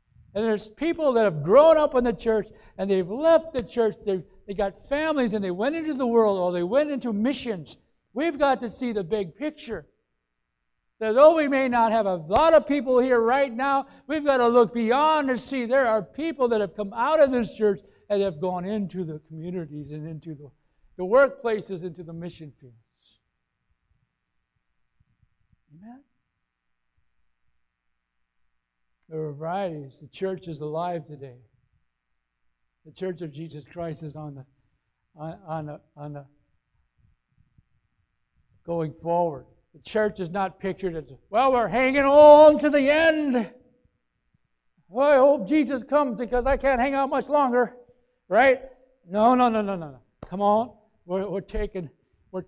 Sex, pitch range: male, 150-250 Hz